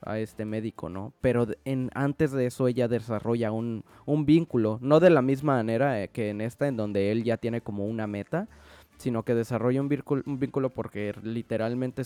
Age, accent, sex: 20-39, Mexican, male